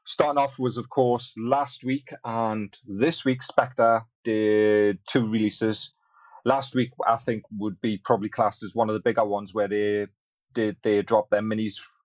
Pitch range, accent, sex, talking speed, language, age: 105-120 Hz, British, male, 180 wpm, English, 30-49